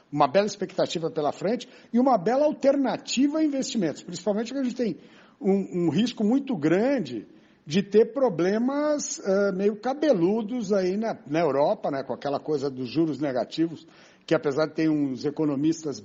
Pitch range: 165-255 Hz